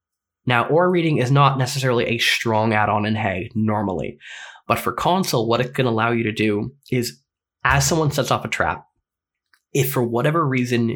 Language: English